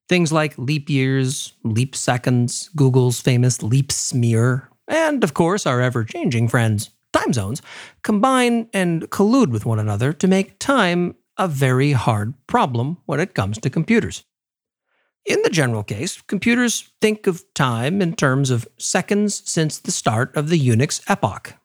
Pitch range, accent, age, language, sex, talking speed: 125-180 Hz, American, 50-69, English, male, 150 wpm